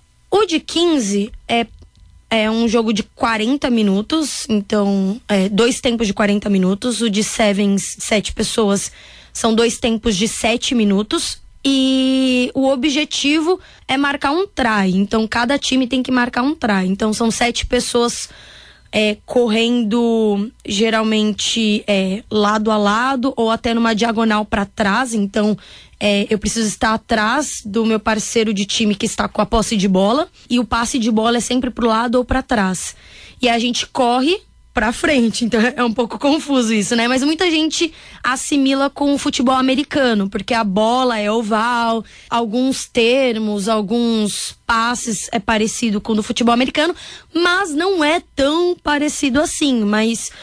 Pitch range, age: 220-265 Hz, 20-39